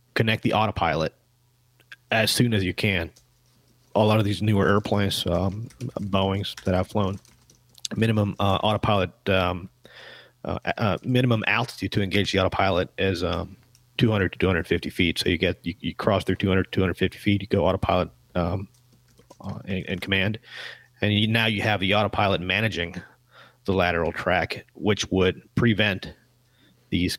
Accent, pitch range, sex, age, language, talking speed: American, 95-115 Hz, male, 30-49, English, 155 wpm